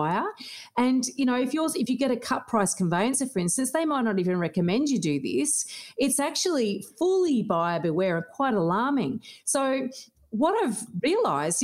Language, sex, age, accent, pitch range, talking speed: English, female, 40-59, Australian, 180-245 Hz, 170 wpm